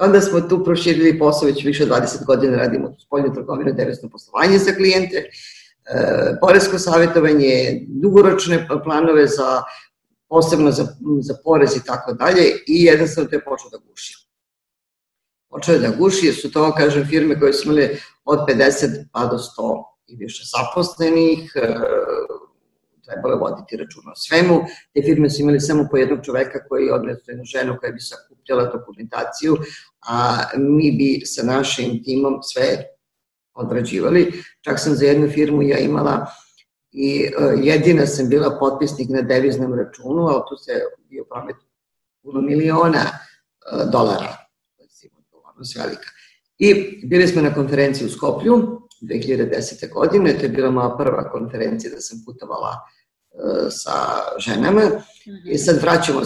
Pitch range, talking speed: 135-175 Hz, 140 wpm